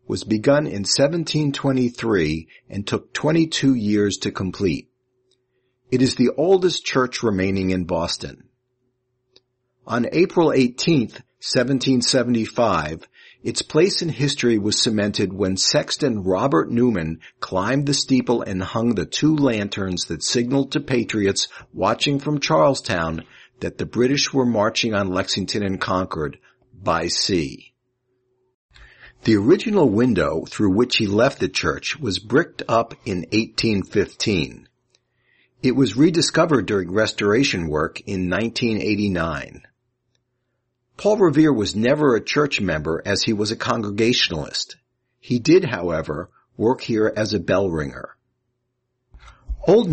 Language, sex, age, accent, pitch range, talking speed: English, male, 50-69, American, 100-130 Hz, 125 wpm